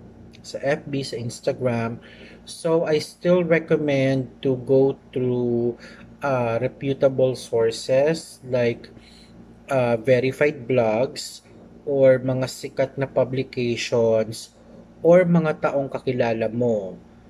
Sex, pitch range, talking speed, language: male, 115-140 Hz, 95 wpm, Filipino